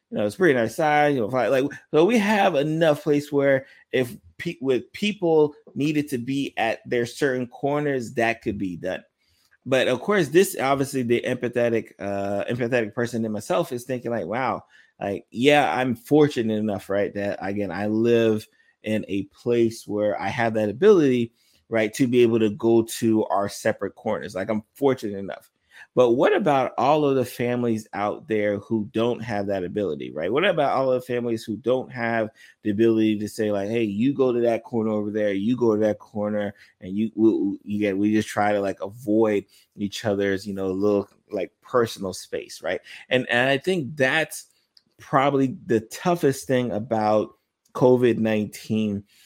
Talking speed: 185 wpm